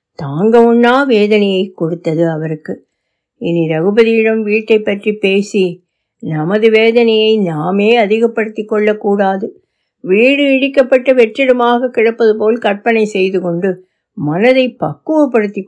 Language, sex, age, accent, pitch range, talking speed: Tamil, female, 60-79, native, 190-245 Hz, 90 wpm